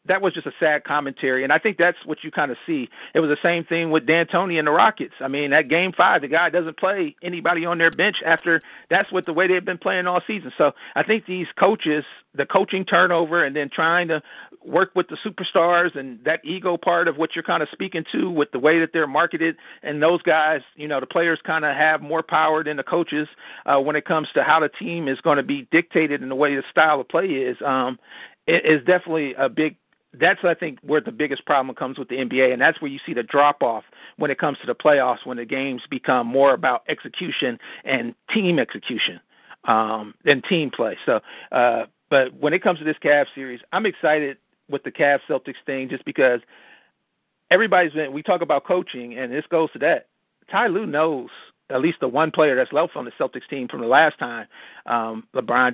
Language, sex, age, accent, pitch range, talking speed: English, male, 50-69, American, 140-175 Hz, 225 wpm